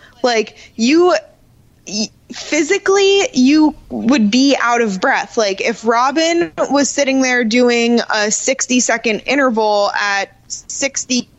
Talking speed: 115 wpm